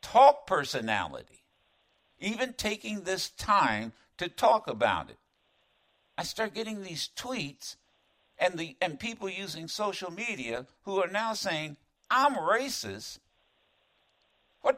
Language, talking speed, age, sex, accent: English, 120 wpm, 60-79, male, American